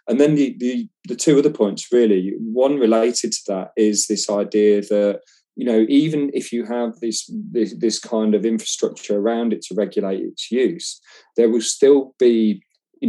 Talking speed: 180 wpm